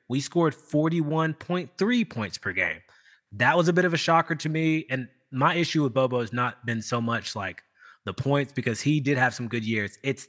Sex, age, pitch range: male, 20-39, 115-155 Hz